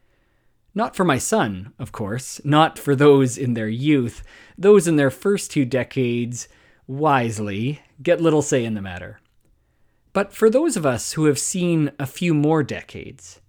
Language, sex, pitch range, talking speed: English, male, 110-140 Hz, 165 wpm